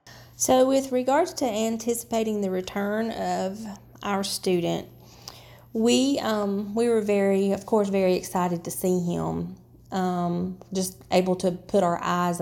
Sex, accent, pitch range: female, American, 175-205 Hz